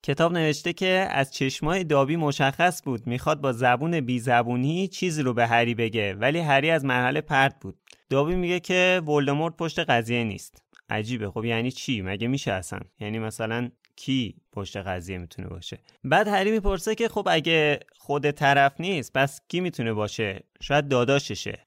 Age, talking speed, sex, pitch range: 20-39, 165 wpm, male, 115-150 Hz